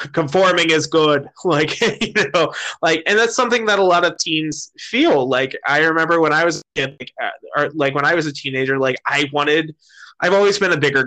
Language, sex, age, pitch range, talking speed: English, male, 20-39, 135-165 Hz, 200 wpm